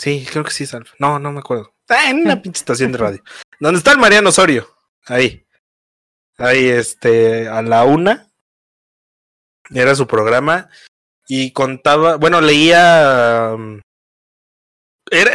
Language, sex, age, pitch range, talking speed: Spanish, male, 20-39, 115-155 Hz, 135 wpm